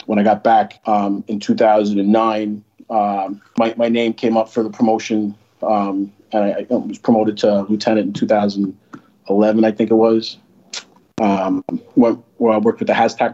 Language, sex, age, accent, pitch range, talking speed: English, male, 30-49, American, 105-120 Hz, 160 wpm